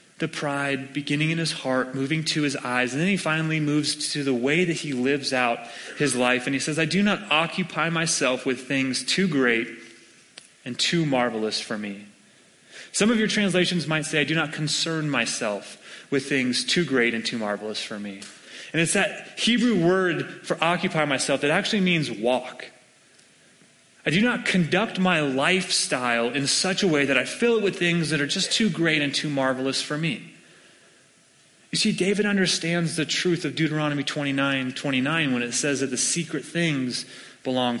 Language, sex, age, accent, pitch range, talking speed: English, male, 30-49, American, 130-180 Hz, 185 wpm